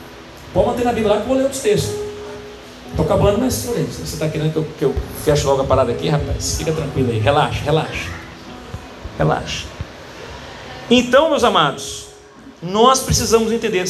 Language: Portuguese